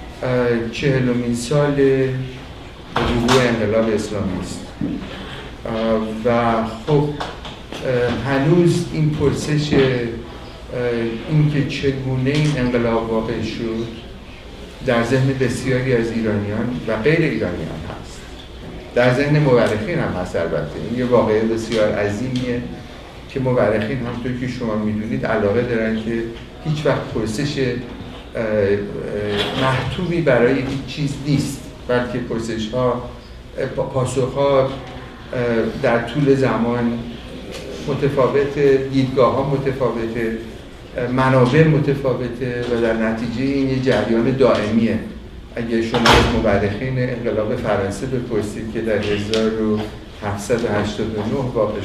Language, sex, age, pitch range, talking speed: Persian, male, 50-69, 110-130 Hz, 100 wpm